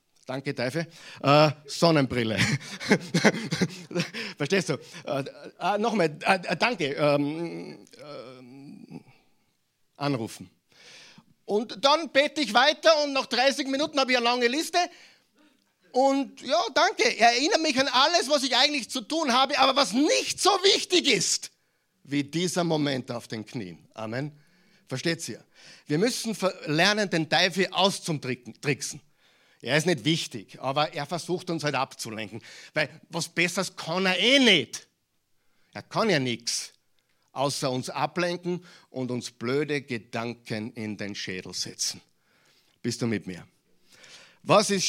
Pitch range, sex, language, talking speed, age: 130-210 Hz, male, German, 135 wpm, 50-69